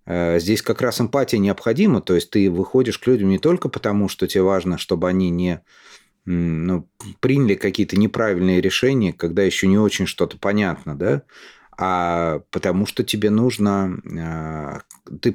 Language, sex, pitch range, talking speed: Russian, male, 90-110 Hz, 150 wpm